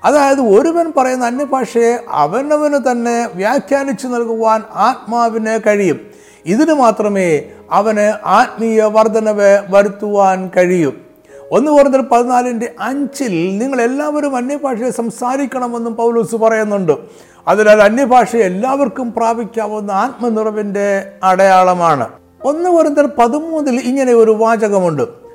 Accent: native